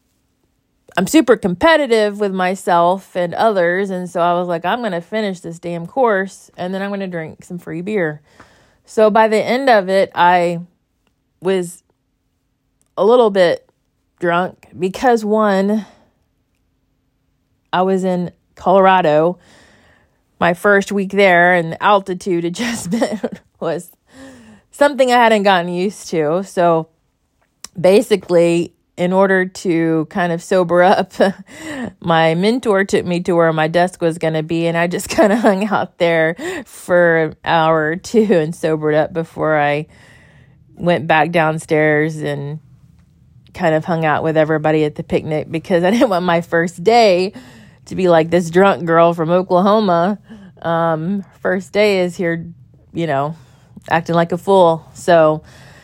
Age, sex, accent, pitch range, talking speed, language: 30-49, female, American, 165-200 Hz, 150 wpm, English